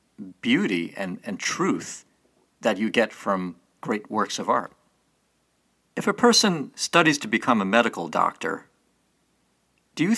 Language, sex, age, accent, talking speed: English, male, 50-69, American, 135 wpm